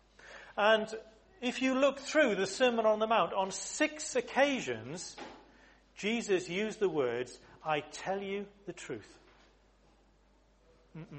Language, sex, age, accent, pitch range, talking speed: English, male, 40-59, British, 155-230 Hz, 125 wpm